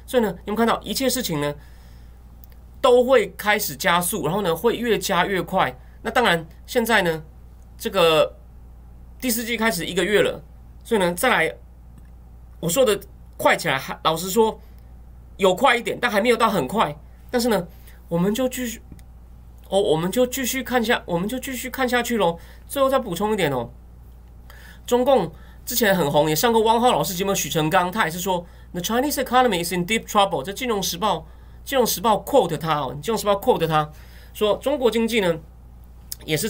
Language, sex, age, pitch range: Chinese, male, 30-49, 150-235 Hz